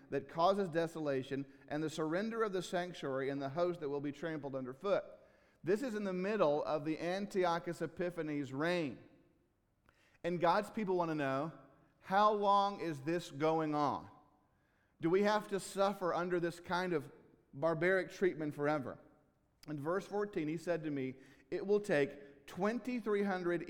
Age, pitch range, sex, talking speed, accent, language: 50-69, 140-185 Hz, male, 155 wpm, American, English